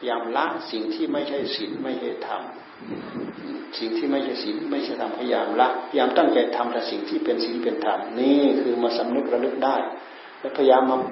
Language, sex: Thai, male